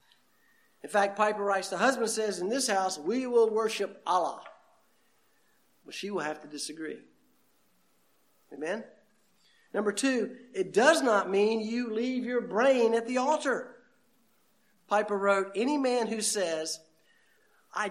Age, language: 50-69, English